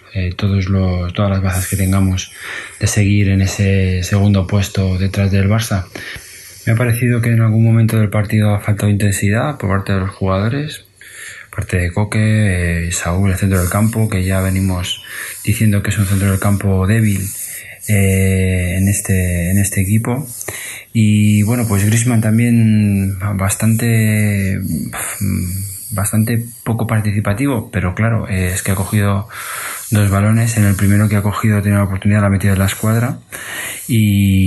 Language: Spanish